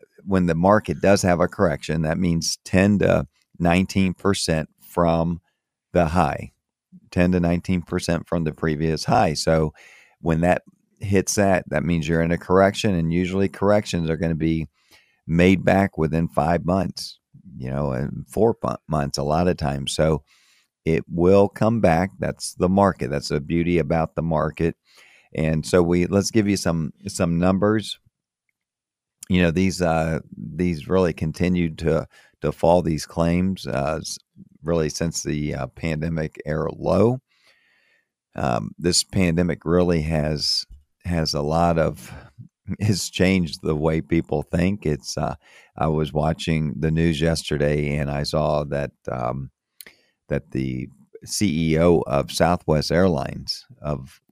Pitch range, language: 75-90 Hz, English